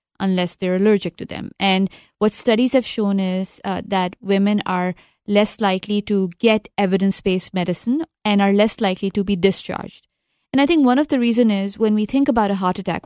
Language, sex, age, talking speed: English, female, 30-49, 200 wpm